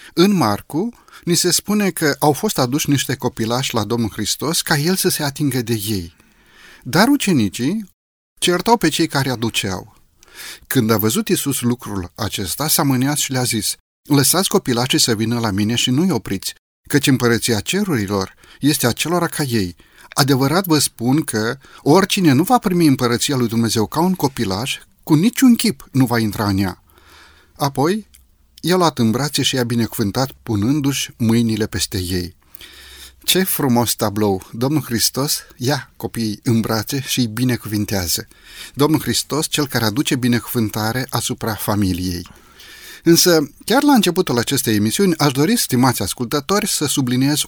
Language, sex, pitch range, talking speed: Romanian, male, 110-155 Hz, 150 wpm